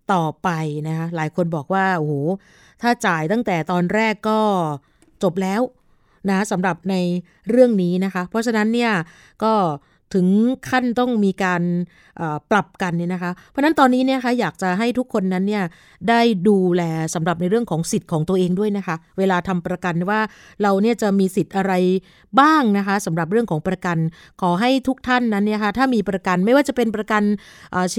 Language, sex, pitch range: Thai, female, 180-220 Hz